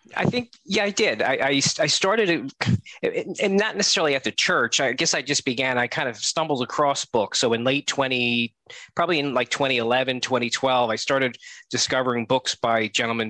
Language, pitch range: English, 110-135 Hz